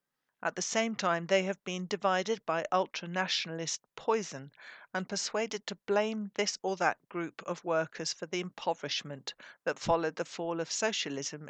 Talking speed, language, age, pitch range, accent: 160 wpm, English, 60-79, 165-205 Hz, British